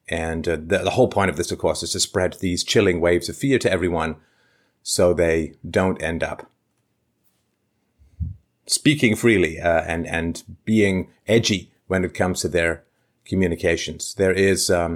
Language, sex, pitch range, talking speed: English, male, 85-115 Hz, 165 wpm